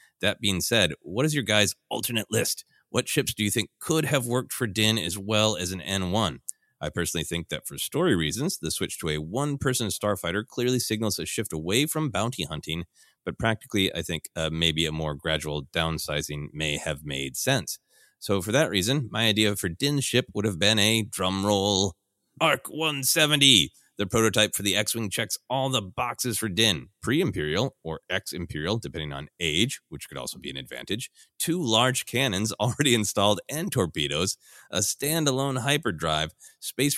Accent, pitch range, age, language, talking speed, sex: American, 85-120 Hz, 30-49, English, 175 wpm, male